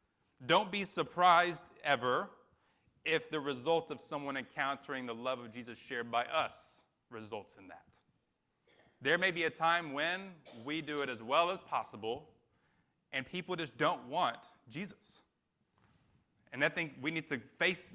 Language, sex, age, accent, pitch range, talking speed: English, male, 30-49, American, 125-165 Hz, 155 wpm